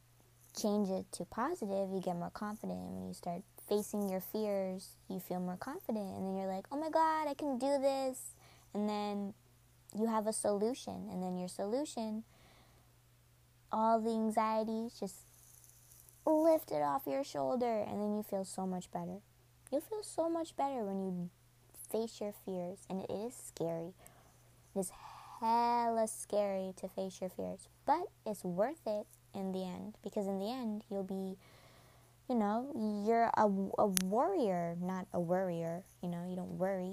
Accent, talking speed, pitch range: American, 170 wpm, 155-215 Hz